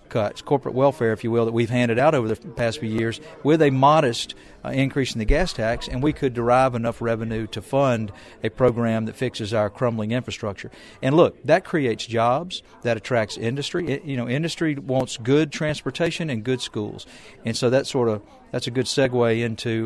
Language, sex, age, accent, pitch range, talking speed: English, male, 40-59, American, 115-140 Hz, 200 wpm